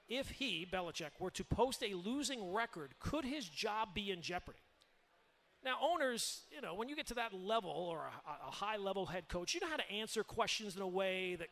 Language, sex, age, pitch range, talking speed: English, male, 40-59, 185-225 Hz, 215 wpm